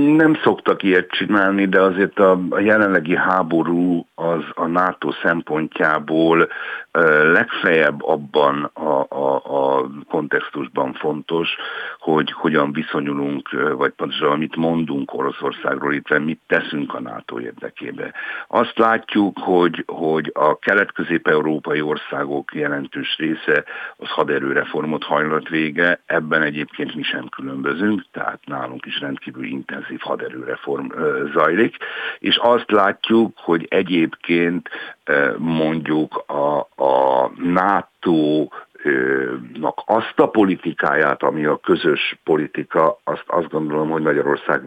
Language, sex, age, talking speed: Hungarian, male, 60-79, 105 wpm